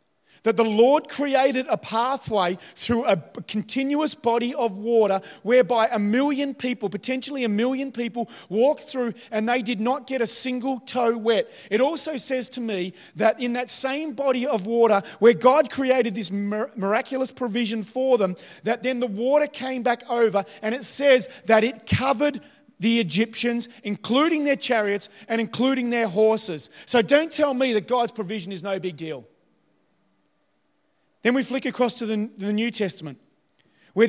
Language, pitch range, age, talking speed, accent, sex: English, 220-265 Hz, 30-49, 165 wpm, Australian, male